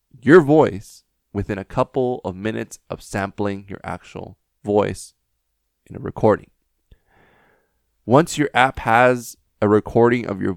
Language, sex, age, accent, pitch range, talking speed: English, male, 20-39, American, 100-130 Hz, 130 wpm